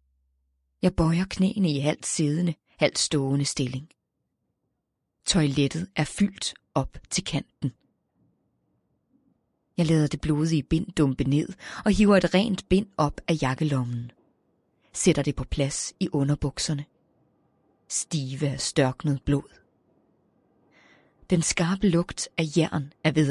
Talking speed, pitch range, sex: 120 wpm, 135-175 Hz, female